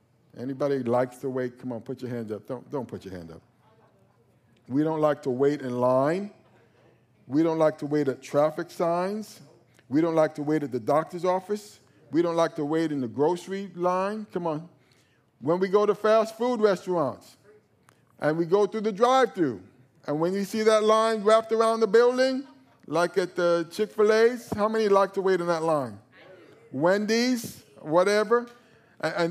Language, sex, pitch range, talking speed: English, male, 145-210 Hz, 180 wpm